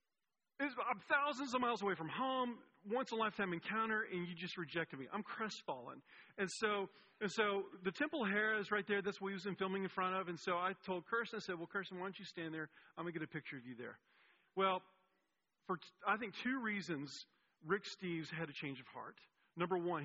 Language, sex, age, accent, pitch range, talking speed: English, male, 40-59, American, 175-225 Hz, 225 wpm